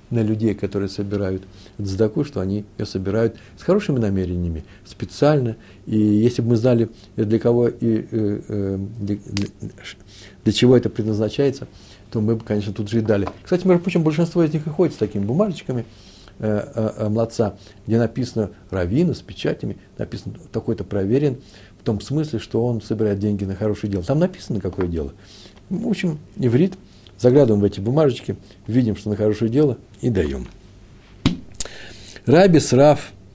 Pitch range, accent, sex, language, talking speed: 100-125 Hz, native, male, Russian, 150 wpm